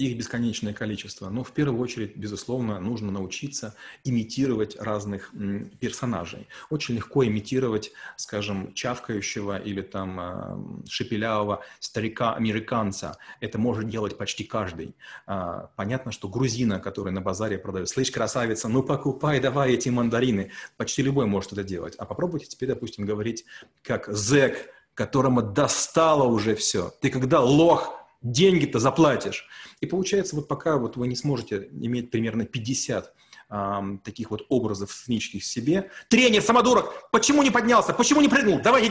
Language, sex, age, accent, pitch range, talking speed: Russian, male, 30-49, native, 105-145 Hz, 140 wpm